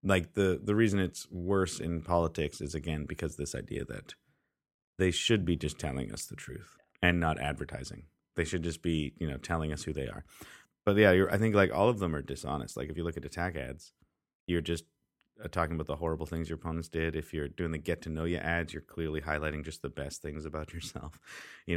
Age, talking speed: 30-49, 230 wpm